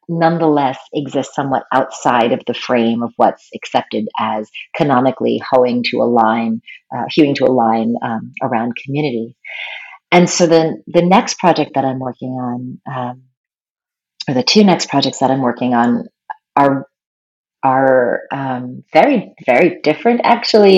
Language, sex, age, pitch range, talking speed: English, female, 30-49, 130-160 Hz, 145 wpm